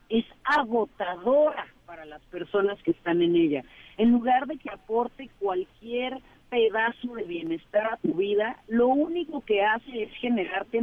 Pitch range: 200-265 Hz